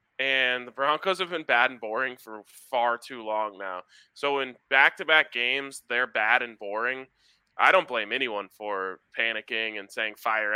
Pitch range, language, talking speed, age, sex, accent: 120-150 Hz, English, 170 wpm, 20-39, male, American